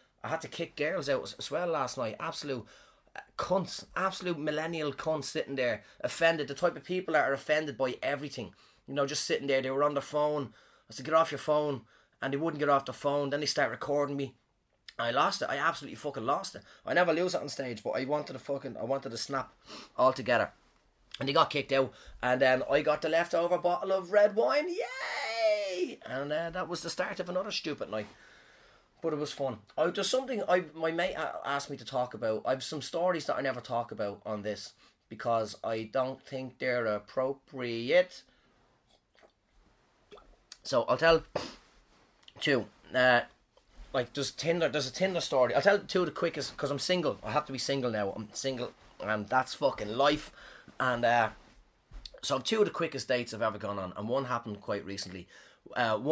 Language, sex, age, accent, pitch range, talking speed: English, male, 20-39, Irish, 125-165 Hz, 200 wpm